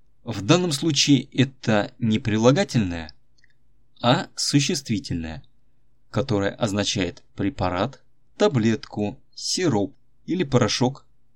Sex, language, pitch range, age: male, Russian, 110-130 Hz, 20-39